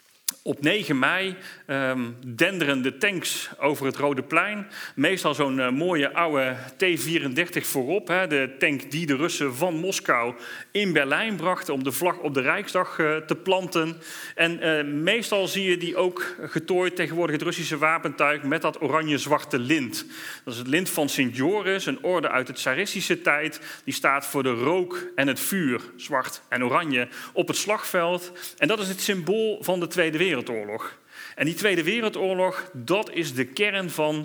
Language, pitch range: Dutch, 140-185 Hz